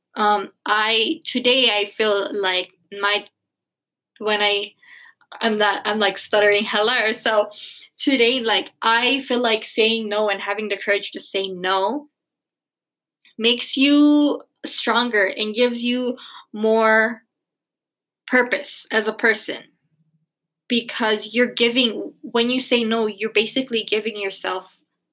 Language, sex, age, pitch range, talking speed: English, female, 20-39, 185-230 Hz, 125 wpm